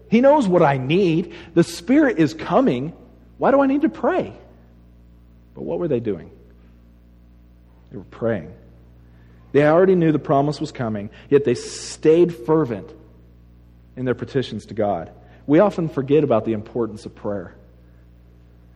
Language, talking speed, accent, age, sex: English, 150 wpm, American, 40-59, male